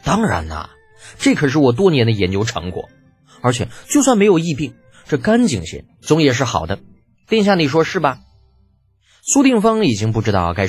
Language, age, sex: Chinese, 20-39, male